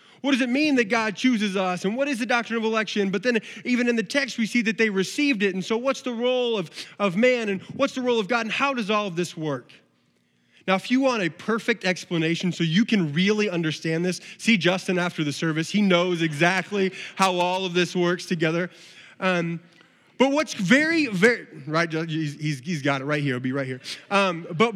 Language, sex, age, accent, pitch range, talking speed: English, male, 20-39, American, 165-225 Hz, 225 wpm